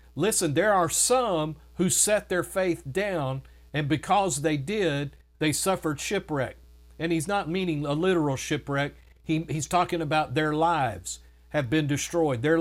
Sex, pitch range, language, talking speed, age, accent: male, 145-185 Hz, English, 155 wpm, 50-69, American